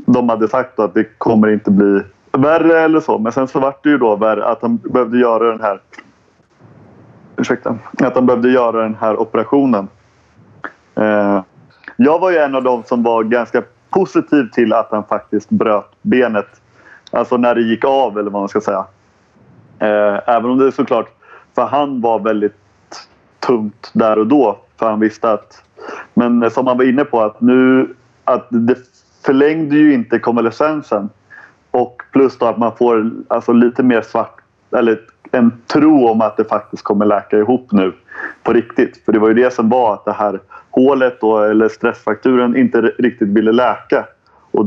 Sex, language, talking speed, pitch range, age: male, English, 175 wpm, 110-130 Hz, 30-49